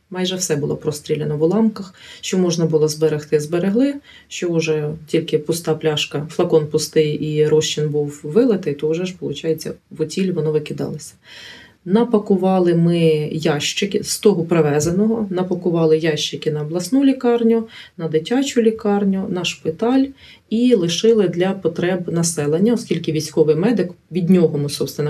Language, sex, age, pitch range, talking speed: Ukrainian, female, 30-49, 155-205 Hz, 130 wpm